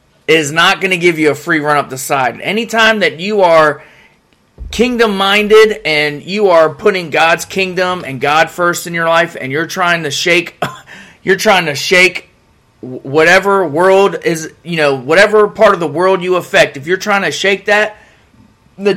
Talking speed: 185 wpm